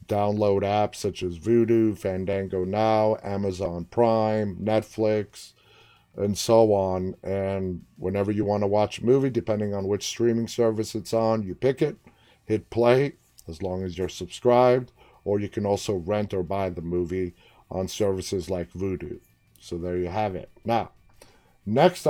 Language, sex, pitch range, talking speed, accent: English, male, 95-115 Hz, 160 wpm, American